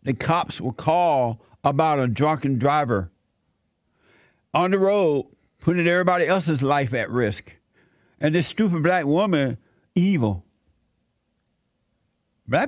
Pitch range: 120-175 Hz